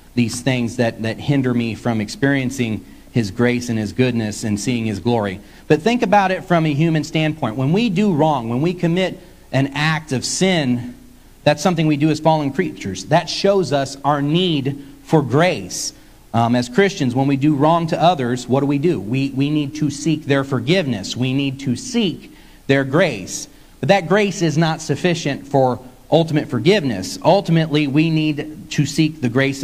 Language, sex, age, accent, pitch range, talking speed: English, male, 40-59, American, 130-165 Hz, 185 wpm